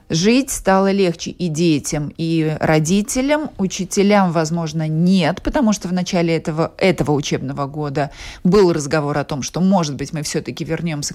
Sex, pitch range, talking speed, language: female, 155-200 Hz, 150 wpm, Russian